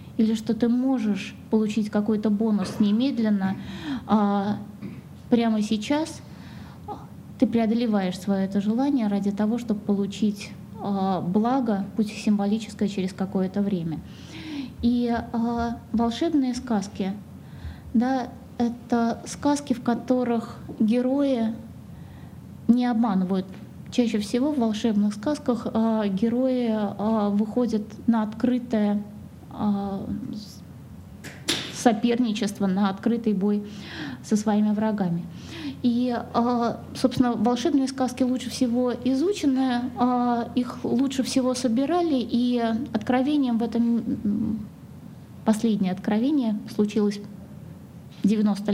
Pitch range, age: 205-245 Hz, 20-39